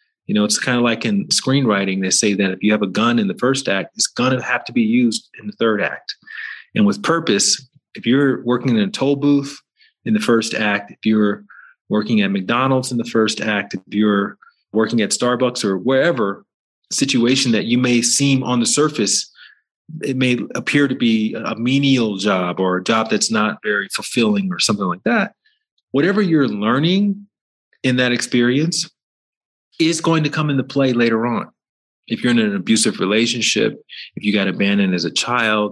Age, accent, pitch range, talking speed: 30-49, American, 110-160 Hz, 195 wpm